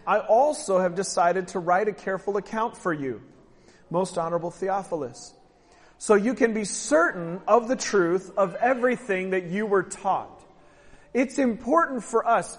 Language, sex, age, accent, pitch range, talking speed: English, male, 40-59, American, 195-245 Hz, 155 wpm